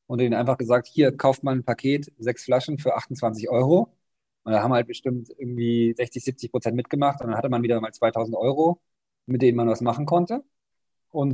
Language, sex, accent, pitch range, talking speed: German, male, German, 115-140 Hz, 210 wpm